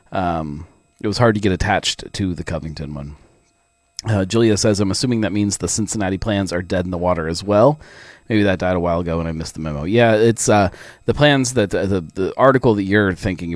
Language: English